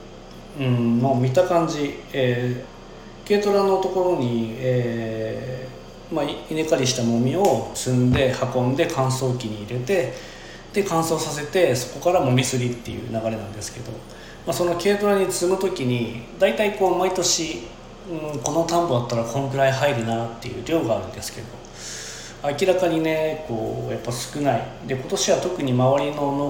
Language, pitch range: Japanese, 120-170 Hz